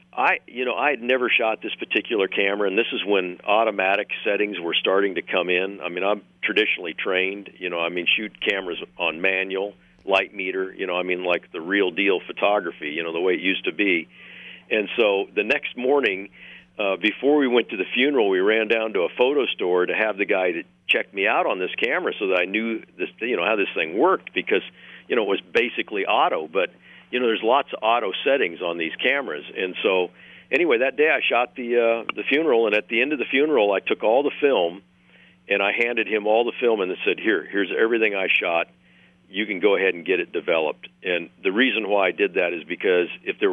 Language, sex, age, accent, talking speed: English, male, 50-69, American, 235 wpm